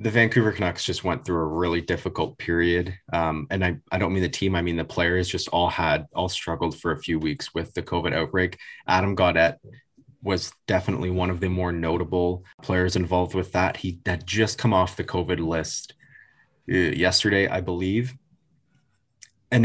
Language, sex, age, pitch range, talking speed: English, male, 20-39, 90-105 Hz, 185 wpm